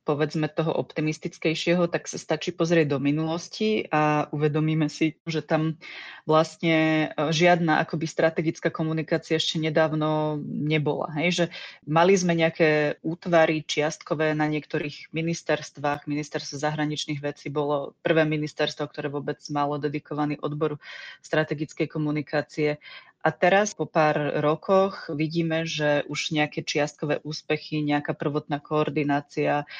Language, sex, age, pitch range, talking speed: Slovak, female, 30-49, 150-165 Hz, 120 wpm